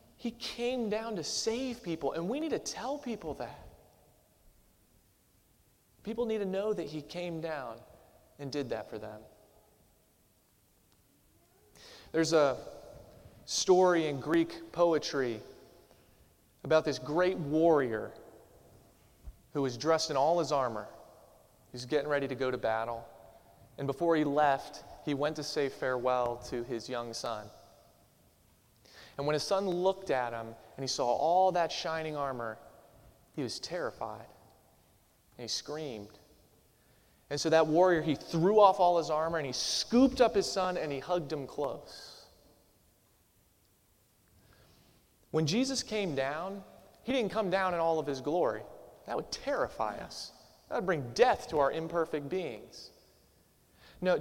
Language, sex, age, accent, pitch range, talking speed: English, male, 30-49, American, 135-185 Hz, 145 wpm